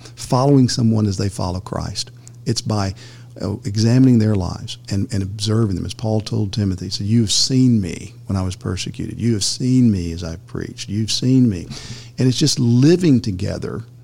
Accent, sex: American, male